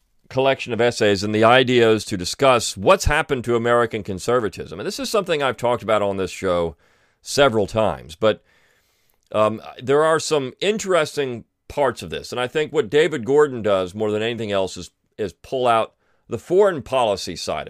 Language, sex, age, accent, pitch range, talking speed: English, male, 40-59, American, 100-130 Hz, 180 wpm